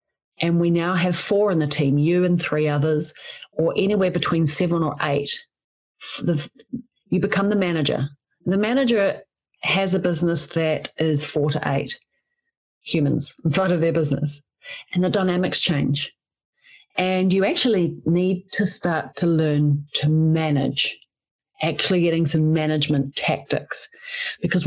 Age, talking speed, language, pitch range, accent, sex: 40-59, 140 wpm, English, 155-205 Hz, Australian, female